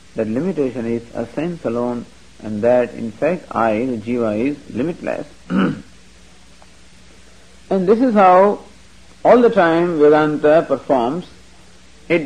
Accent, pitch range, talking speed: Indian, 140-195 Hz, 120 wpm